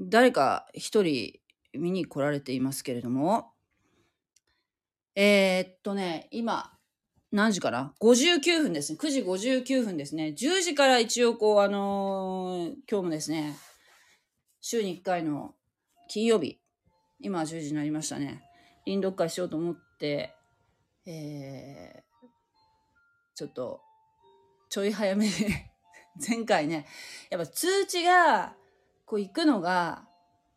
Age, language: 30-49, Japanese